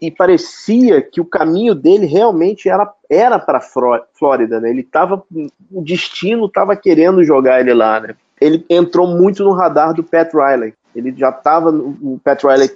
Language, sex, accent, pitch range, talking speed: Portuguese, male, Brazilian, 140-180 Hz, 175 wpm